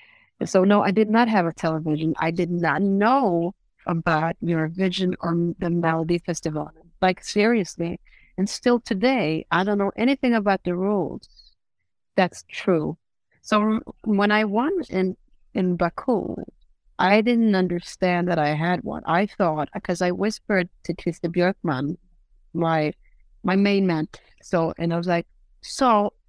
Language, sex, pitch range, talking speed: English, female, 175-240 Hz, 145 wpm